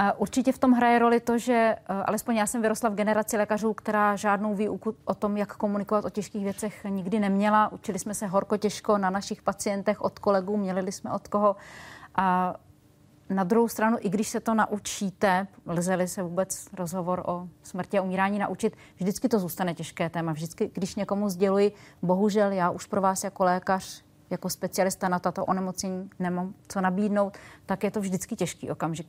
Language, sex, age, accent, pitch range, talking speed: Czech, female, 30-49, native, 180-205 Hz, 175 wpm